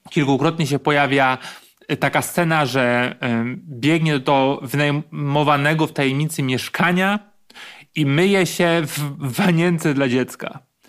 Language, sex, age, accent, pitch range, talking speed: Polish, male, 30-49, native, 140-170 Hz, 105 wpm